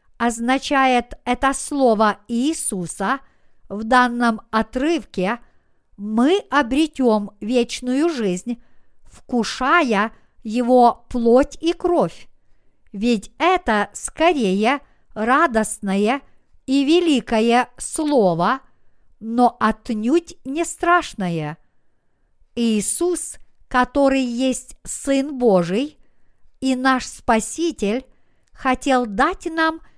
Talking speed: 75 wpm